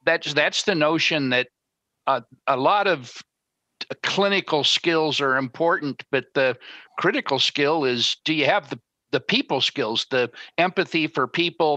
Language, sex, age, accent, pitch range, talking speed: English, male, 50-69, American, 125-155 Hz, 155 wpm